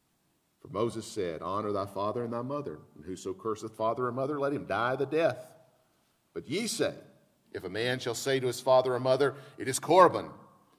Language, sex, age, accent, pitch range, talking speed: English, male, 50-69, American, 120-145 Hz, 200 wpm